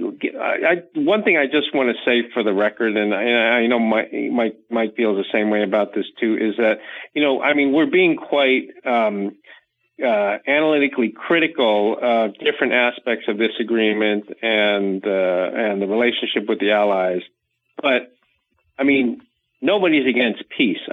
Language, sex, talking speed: English, male, 175 wpm